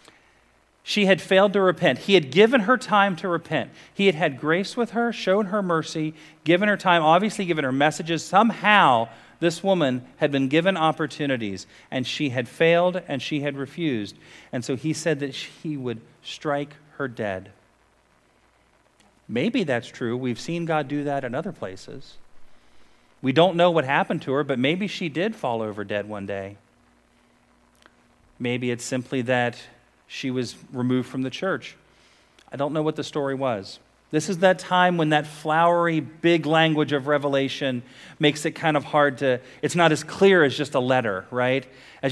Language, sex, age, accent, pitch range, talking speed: English, male, 40-59, American, 125-170 Hz, 175 wpm